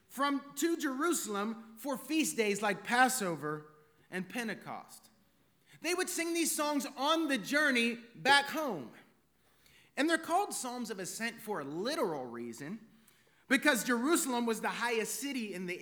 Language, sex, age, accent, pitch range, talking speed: English, male, 30-49, American, 195-280 Hz, 145 wpm